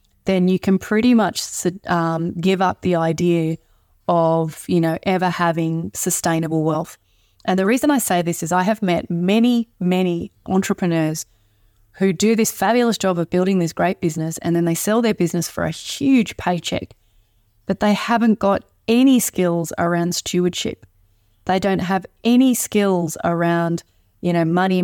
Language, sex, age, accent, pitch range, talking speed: English, female, 20-39, Australian, 170-205 Hz, 160 wpm